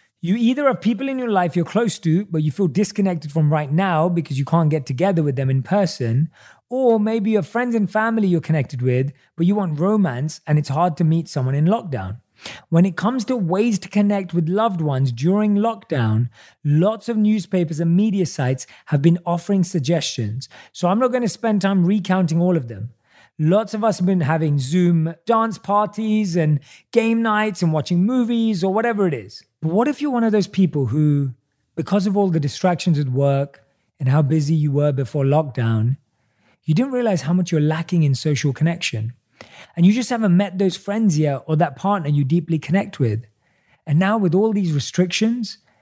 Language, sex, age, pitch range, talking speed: English, male, 30-49, 145-200 Hz, 200 wpm